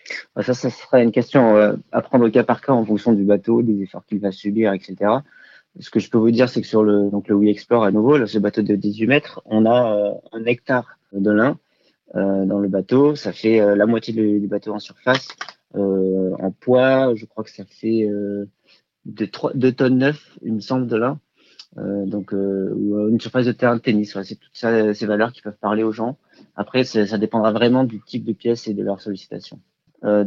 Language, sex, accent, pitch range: French, male, French, 100-120 Hz